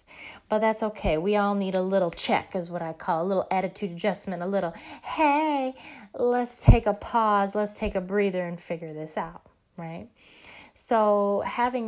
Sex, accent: female, American